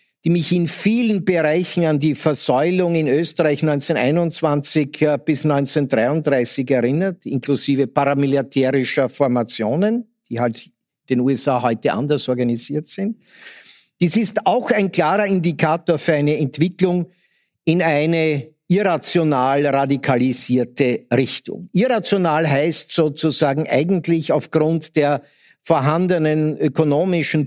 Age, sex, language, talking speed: 50-69, male, German, 105 wpm